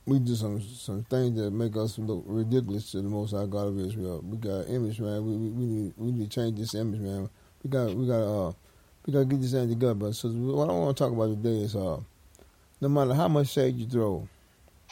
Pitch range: 100-125 Hz